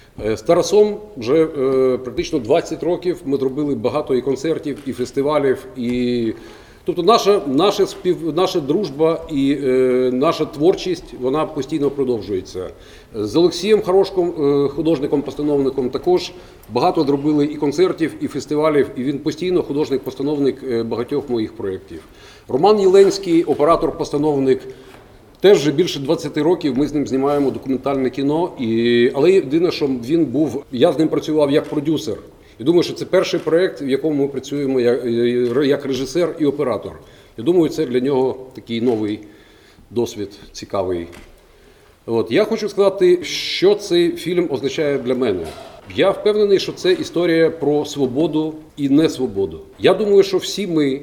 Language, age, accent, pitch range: Ukrainian, 40-59, native, 130-180 Hz